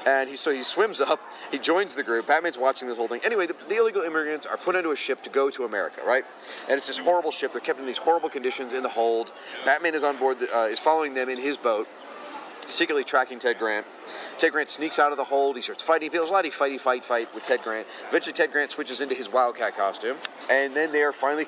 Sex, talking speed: male, 270 wpm